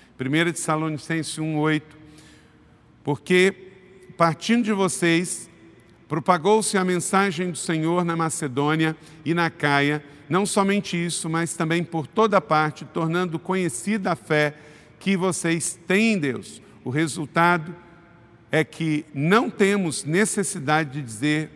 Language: Portuguese